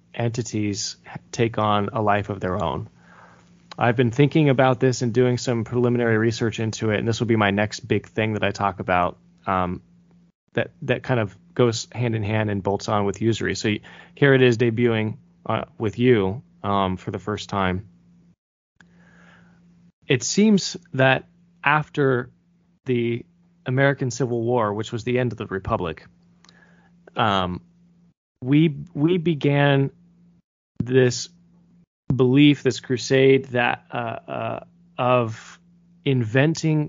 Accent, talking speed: American, 140 wpm